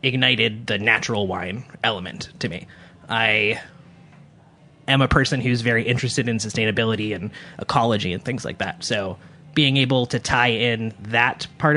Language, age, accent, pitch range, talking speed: English, 20-39, American, 110-145 Hz, 155 wpm